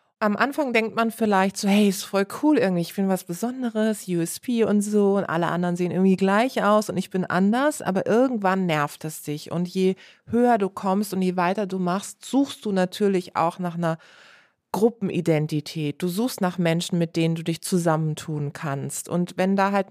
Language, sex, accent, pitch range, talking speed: German, female, German, 170-205 Hz, 195 wpm